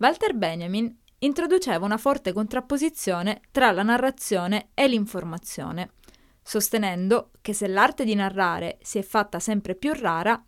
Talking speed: 130 wpm